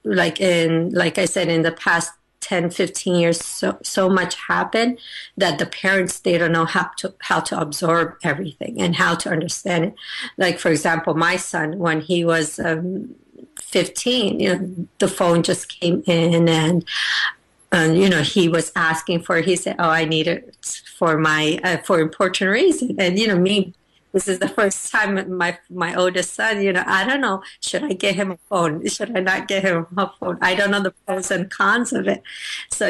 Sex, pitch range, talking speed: female, 170-190 Hz, 200 wpm